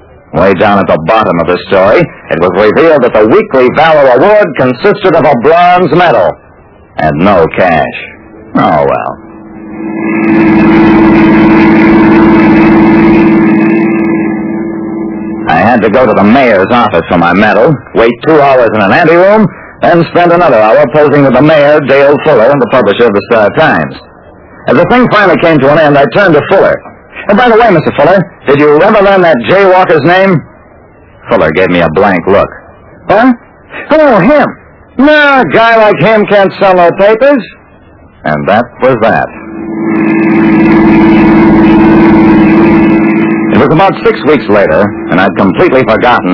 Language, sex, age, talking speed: English, male, 60-79, 155 wpm